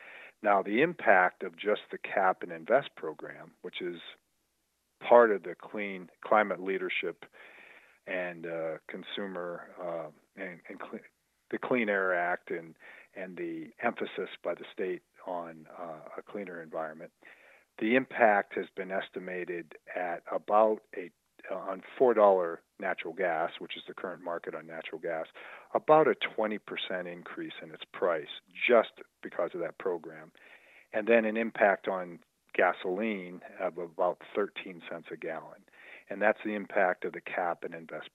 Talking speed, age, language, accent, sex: 145 wpm, 40-59, English, American, male